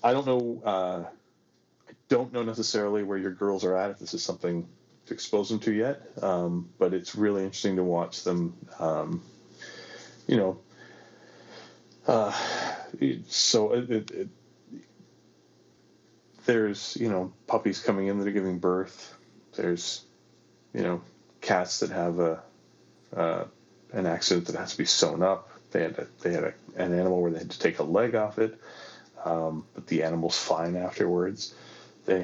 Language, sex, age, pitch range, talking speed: English, male, 30-49, 85-105 Hz, 160 wpm